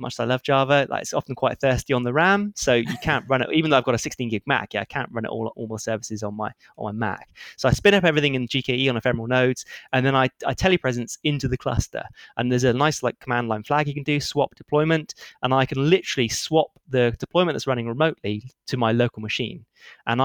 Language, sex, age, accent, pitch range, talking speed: English, male, 20-39, British, 125-155 Hz, 255 wpm